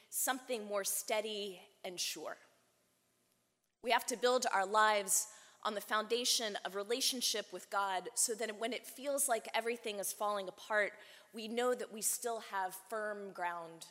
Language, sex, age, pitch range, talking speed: English, female, 20-39, 180-225 Hz, 155 wpm